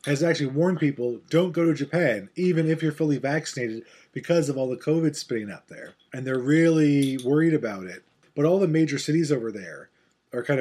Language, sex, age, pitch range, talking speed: English, male, 30-49, 125-160 Hz, 205 wpm